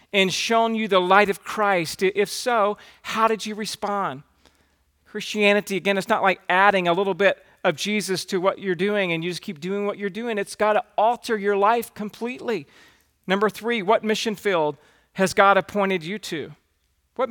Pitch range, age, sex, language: 170-210 Hz, 40-59, male, English